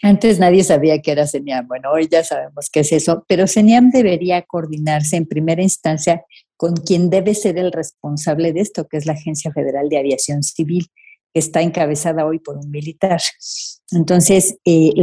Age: 50-69